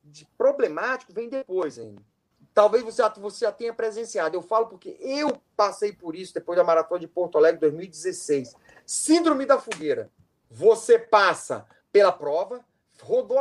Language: Portuguese